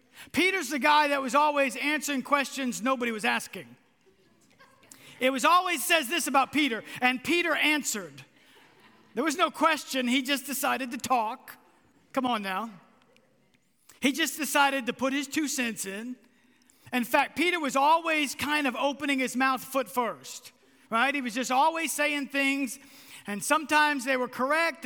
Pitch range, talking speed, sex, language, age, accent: 245-300 Hz, 160 wpm, male, English, 50-69, American